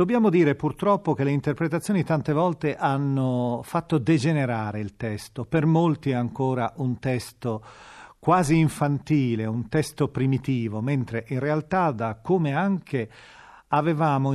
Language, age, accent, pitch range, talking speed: Italian, 40-59, native, 115-155 Hz, 130 wpm